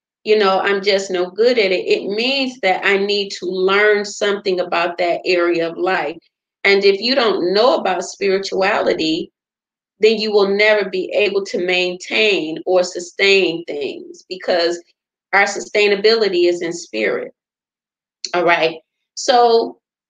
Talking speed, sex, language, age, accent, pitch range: 145 wpm, female, English, 30-49, American, 180-225 Hz